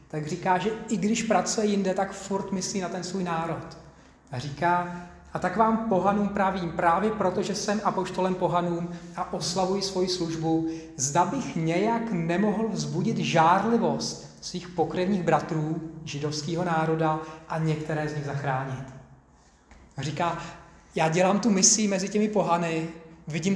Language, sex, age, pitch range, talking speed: Czech, male, 30-49, 160-195 Hz, 145 wpm